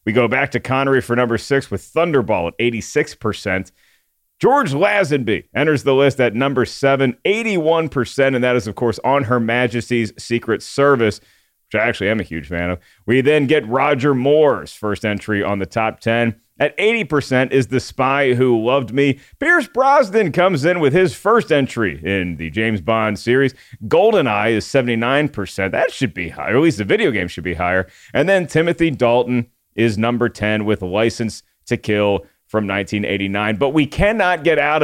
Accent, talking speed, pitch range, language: American, 180 wpm, 110-150 Hz, English